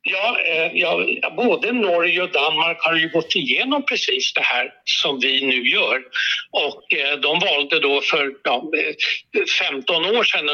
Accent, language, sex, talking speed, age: native, Swedish, male, 140 wpm, 60-79